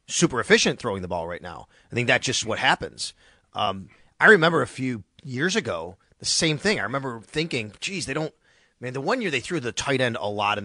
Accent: American